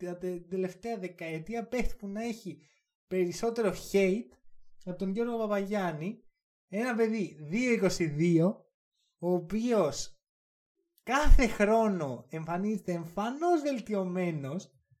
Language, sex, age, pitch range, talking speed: Greek, male, 20-39, 180-260 Hz, 90 wpm